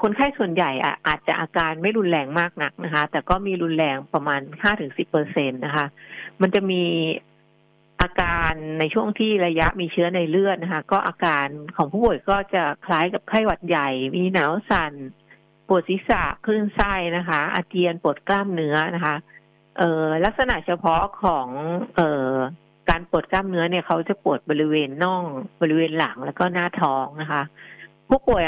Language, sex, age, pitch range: English, female, 60-79, 155-185 Hz